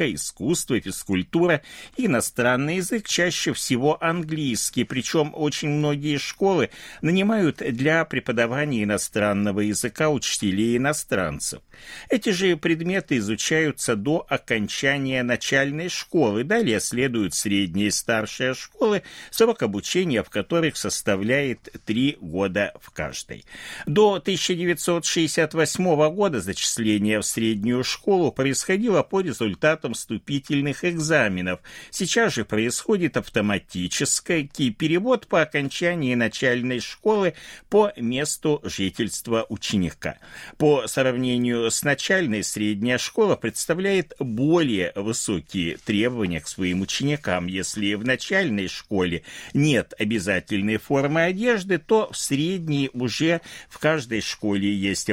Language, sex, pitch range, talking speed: Russian, male, 105-165 Hz, 105 wpm